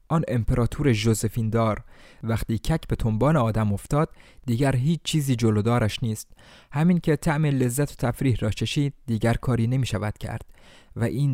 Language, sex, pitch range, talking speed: Persian, male, 105-135 Hz, 155 wpm